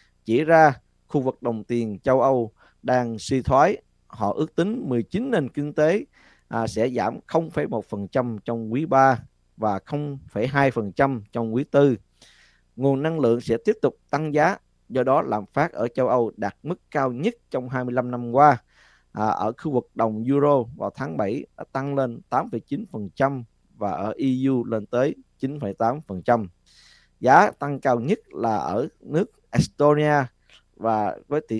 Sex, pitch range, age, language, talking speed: male, 110-140 Hz, 20-39, Vietnamese, 150 wpm